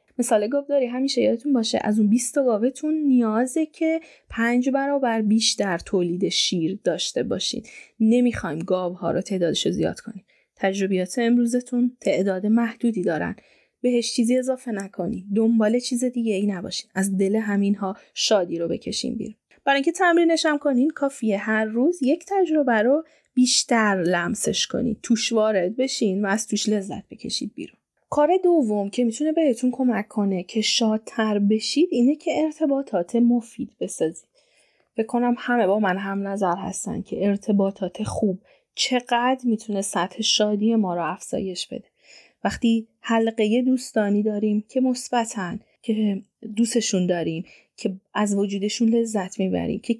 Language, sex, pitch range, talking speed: Persian, female, 200-255 Hz, 135 wpm